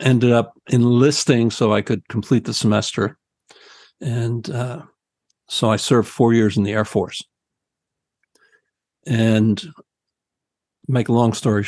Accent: American